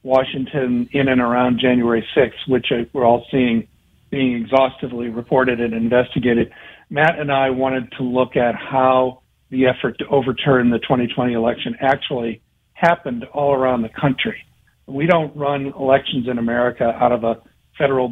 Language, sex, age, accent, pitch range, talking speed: English, male, 50-69, American, 120-140 Hz, 150 wpm